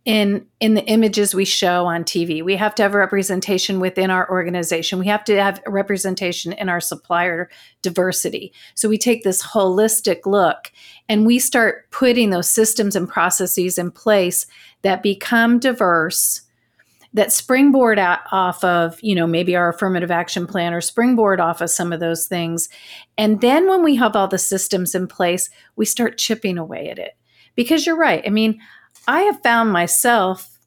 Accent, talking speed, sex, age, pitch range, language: American, 175 wpm, female, 40-59, 180-220 Hz, English